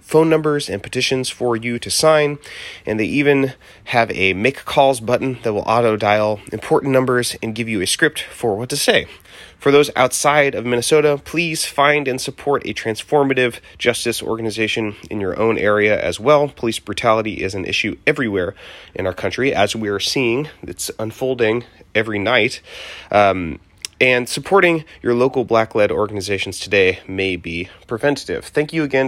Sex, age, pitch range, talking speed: male, 30-49, 100-135 Hz, 165 wpm